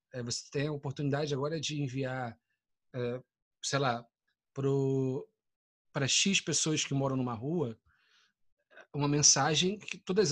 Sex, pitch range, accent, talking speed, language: male, 135-170 Hz, Brazilian, 115 wpm, Portuguese